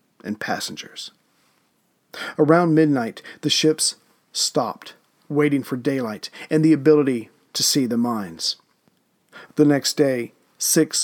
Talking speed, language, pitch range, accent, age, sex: 115 wpm, English, 135-155 Hz, American, 40-59, male